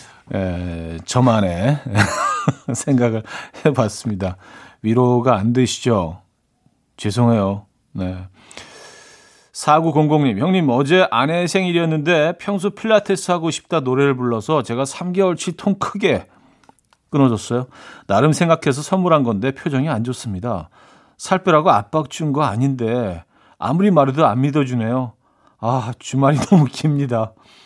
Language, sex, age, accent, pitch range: Korean, male, 40-59, native, 120-170 Hz